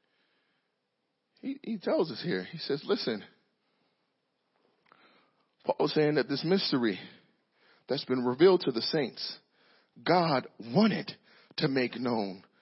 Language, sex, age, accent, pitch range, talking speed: English, male, 40-59, American, 140-210 Hz, 115 wpm